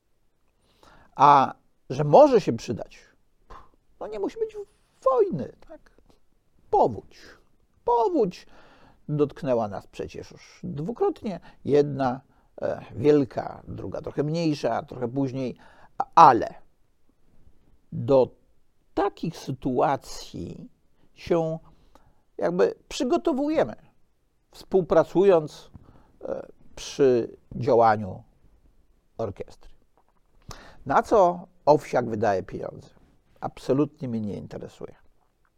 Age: 50-69